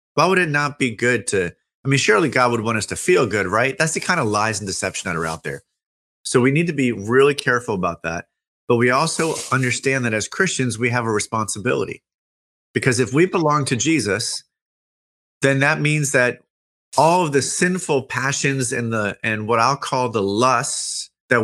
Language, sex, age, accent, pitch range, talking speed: English, male, 30-49, American, 100-135 Hz, 205 wpm